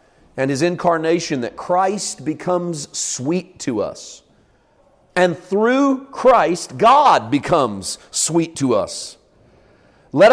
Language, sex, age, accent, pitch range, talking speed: English, male, 40-59, American, 140-190 Hz, 105 wpm